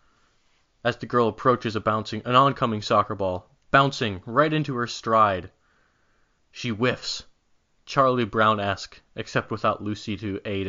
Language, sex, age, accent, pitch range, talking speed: English, male, 20-39, American, 100-120 Hz, 140 wpm